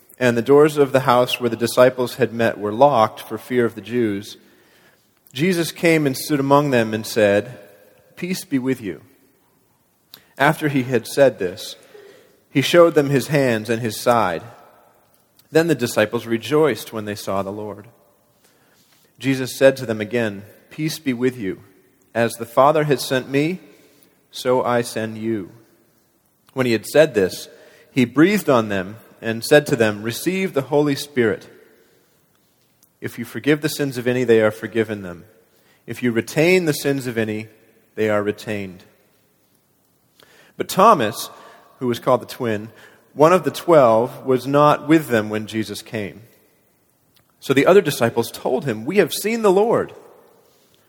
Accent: American